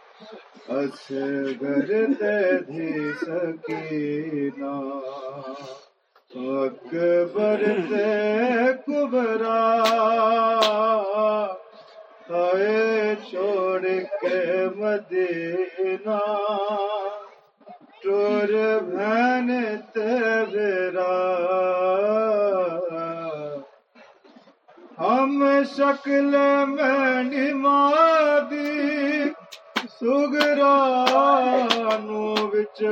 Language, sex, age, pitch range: Urdu, male, 30-49, 175-255 Hz